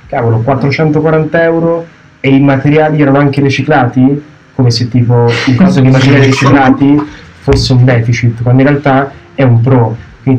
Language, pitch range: Italian, 120-135 Hz